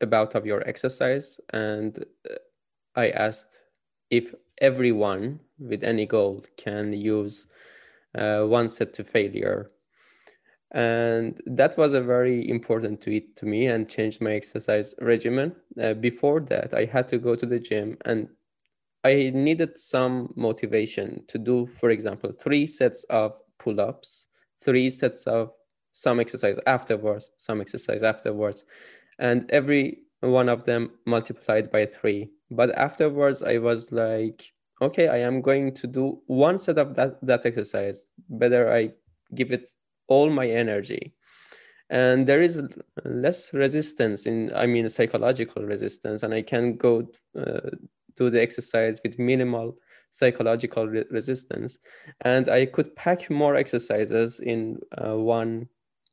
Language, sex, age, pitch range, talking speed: Persian, male, 20-39, 110-135 Hz, 140 wpm